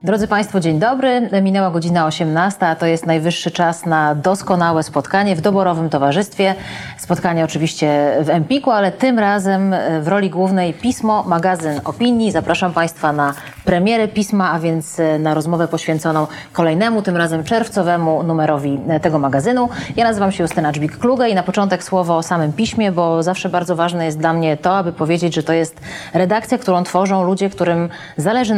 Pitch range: 165-195 Hz